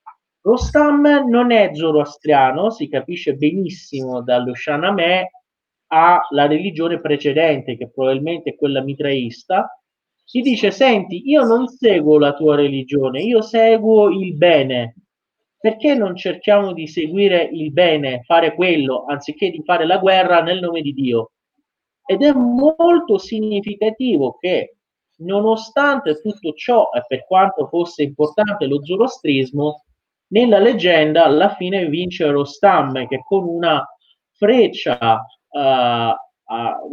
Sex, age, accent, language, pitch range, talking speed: male, 30-49, native, Italian, 150-220 Hz, 120 wpm